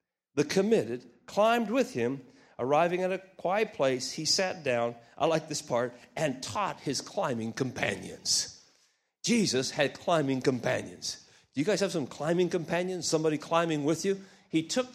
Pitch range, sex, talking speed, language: 135-185 Hz, male, 155 wpm, English